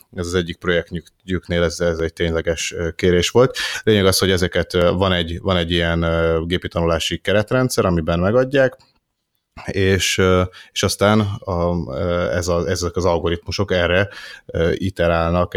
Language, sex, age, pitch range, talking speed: Hungarian, male, 30-49, 85-95 Hz, 135 wpm